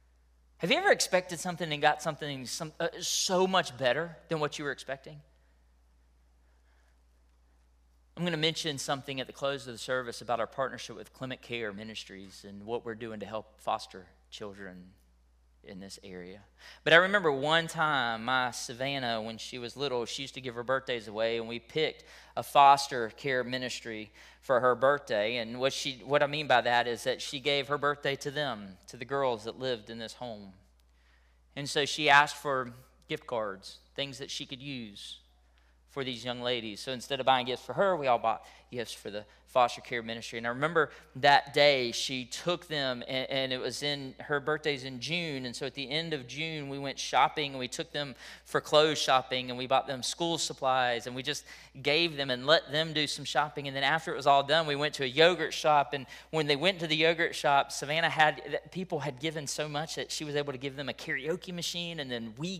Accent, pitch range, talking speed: American, 115-150 Hz, 210 wpm